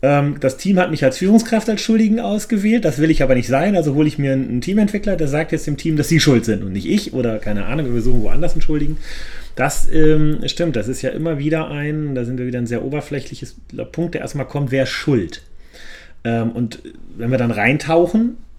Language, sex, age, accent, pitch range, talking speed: German, male, 30-49, German, 110-155 Hz, 225 wpm